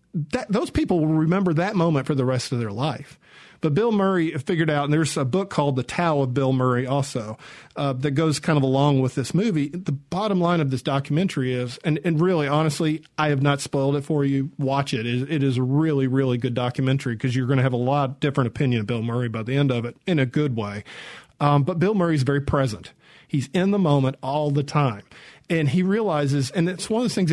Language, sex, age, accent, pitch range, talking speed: English, male, 40-59, American, 130-160 Hz, 235 wpm